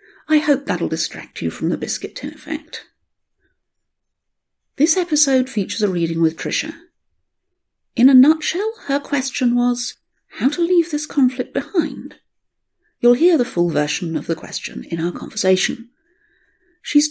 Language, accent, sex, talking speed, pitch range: English, British, female, 145 wpm, 205-305 Hz